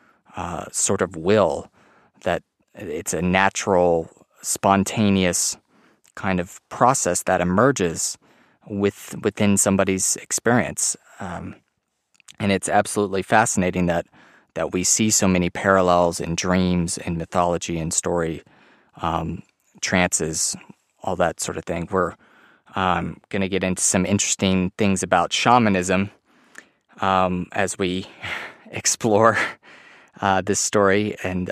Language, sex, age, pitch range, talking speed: English, male, 30-49, 90-100 Hz, 120 wpm